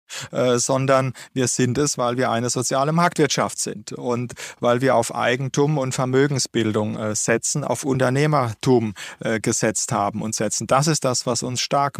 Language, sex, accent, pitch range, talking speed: German, male, German, 120-135 Hz, 165 wpm